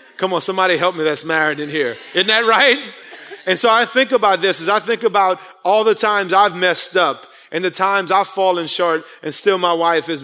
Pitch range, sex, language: 175-215 Hz, male, English